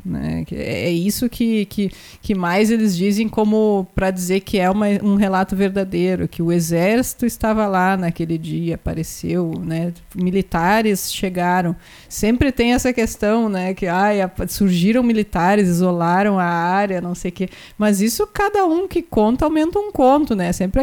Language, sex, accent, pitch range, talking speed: Portuguese, female, Brazilian, 185-230 Hz, 150 wpm